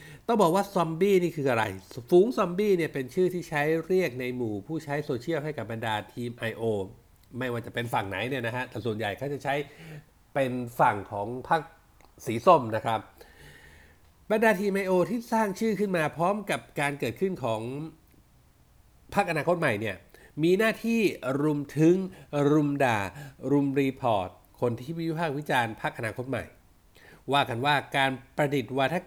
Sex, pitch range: male, 120-165 Hz